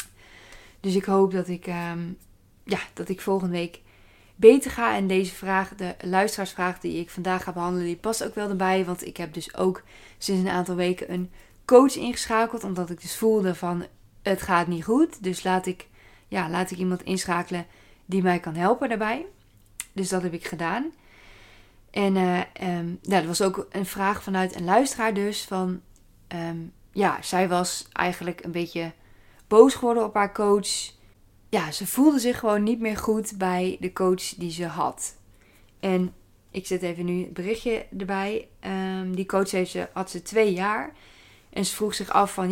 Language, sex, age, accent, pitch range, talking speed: Dutch, female, 20-39, Dutch, 170-200 Hz, 180 wpm